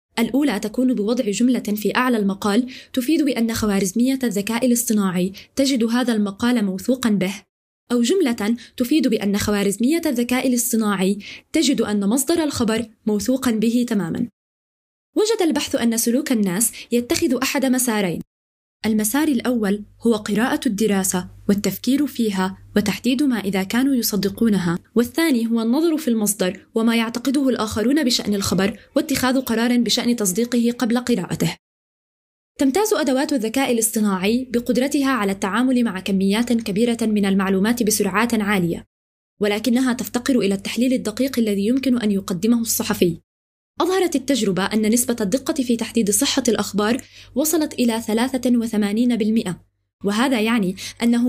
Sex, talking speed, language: female, 125 wpm, Arabic